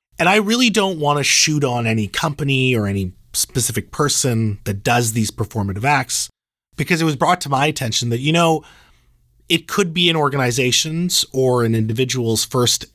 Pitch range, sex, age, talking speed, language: 105-145 Hz, male, 30-49, 175 wpm, English